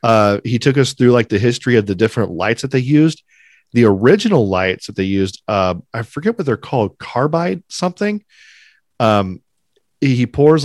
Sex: male